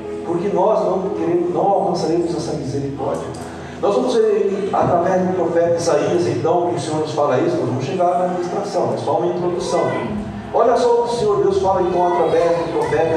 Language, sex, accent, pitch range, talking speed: Portuguese, male, Brazilian, 155-245 Hz, 195 wpm